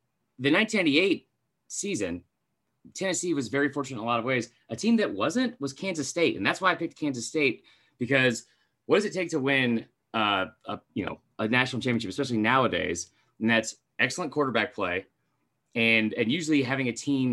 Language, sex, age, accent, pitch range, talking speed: English, male, 30-49, American, 110-140 Hz, 185 wpm